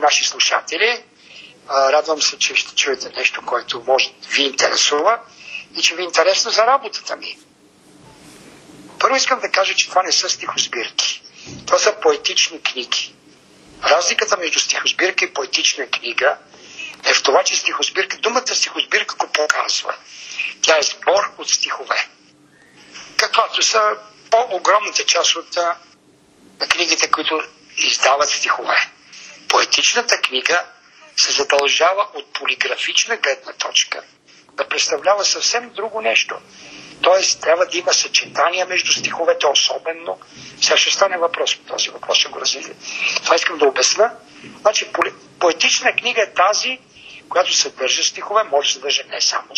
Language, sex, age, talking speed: Bulgarian, male, 50-69, 130 wpm